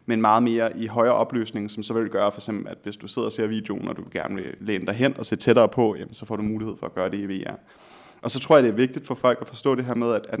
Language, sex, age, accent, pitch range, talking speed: Danish, male, 30-49, native, 110-135 Hz, 325 wpm